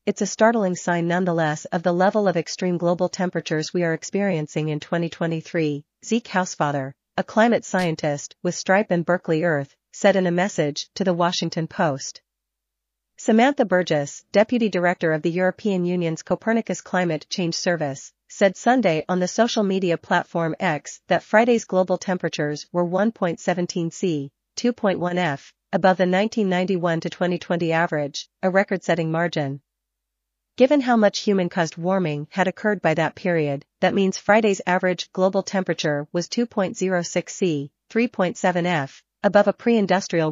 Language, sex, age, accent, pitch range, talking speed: English, female, 40-59, American, 160-195 Hz, 145 wpm